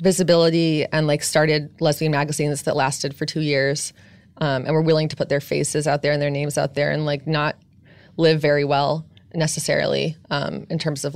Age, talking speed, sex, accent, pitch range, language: 20-39, 200 wpm, female, American, 145-165 Hz, English